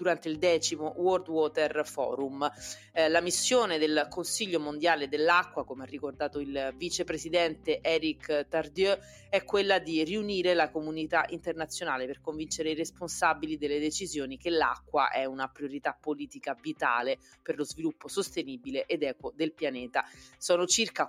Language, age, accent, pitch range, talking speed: Italian, 30-49, native, 150-175 Hz, 140 wpm